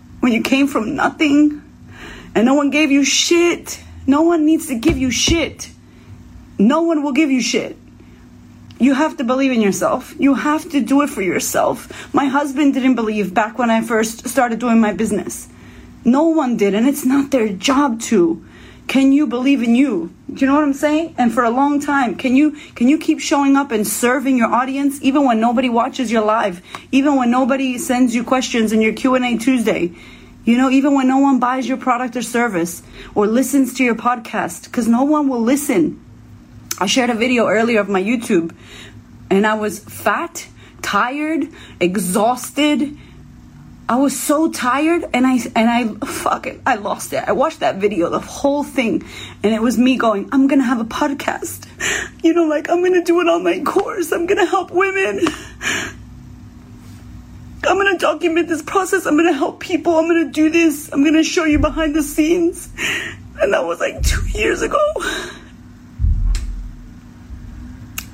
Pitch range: 235-305 Hz